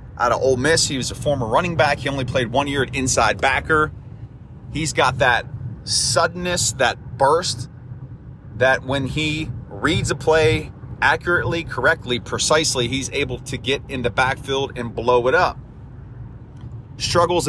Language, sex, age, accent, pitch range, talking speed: English, male, 30-49, American, 120-145 Hz, 155 wpm